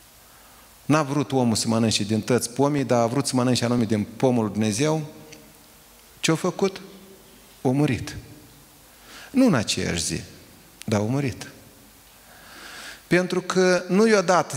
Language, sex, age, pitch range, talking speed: Romanian, male, 30-49, 120-180 Hz, 145 wpm